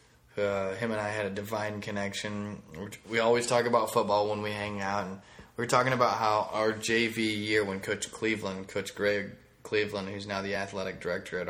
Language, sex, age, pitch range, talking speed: English, male, 20-39, 95-110 Hz, 200 wpm